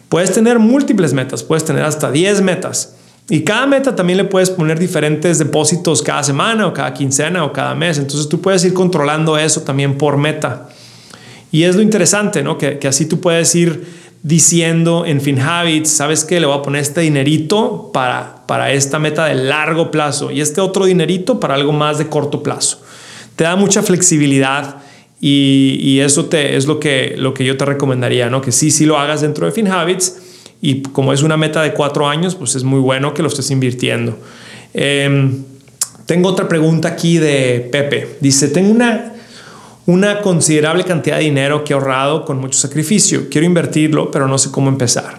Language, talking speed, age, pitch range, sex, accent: Spanish, 190 wpm, 30-49, 140-175 Hz, male, Mexican